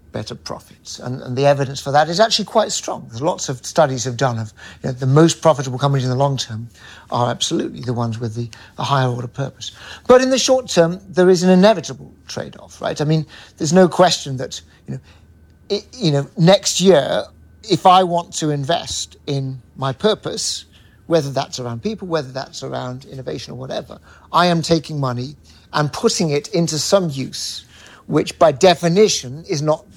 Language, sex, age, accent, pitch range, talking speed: English, male, 60-79, British, 125-170 Hz, 190 wpm